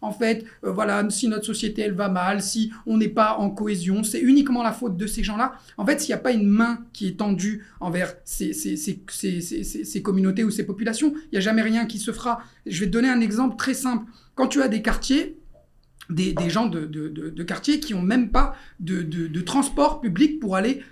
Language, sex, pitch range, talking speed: French, male, 200-255 Hz, 250 wpm